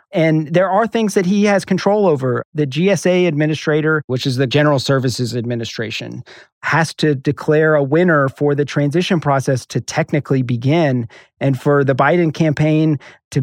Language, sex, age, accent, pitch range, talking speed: English, male, 40-59, American, 140-165 Hz, 160 wpm